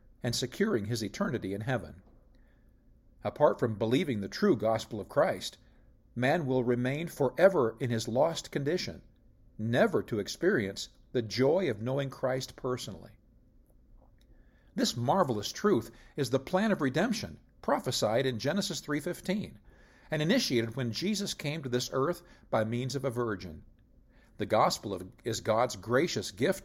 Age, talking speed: 50-69, 140 wpm